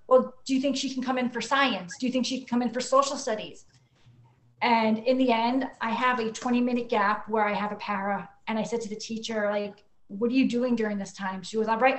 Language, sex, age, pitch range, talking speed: English, female, 30-49, 210-240 Hz, 265 wpm